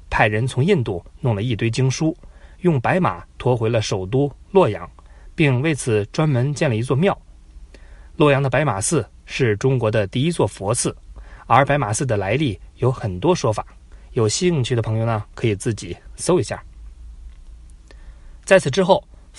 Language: Chinese